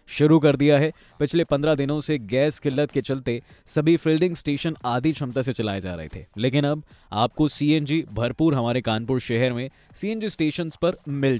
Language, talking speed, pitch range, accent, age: Hindi, 185 wpm, 125-165 Hz, native, 20-39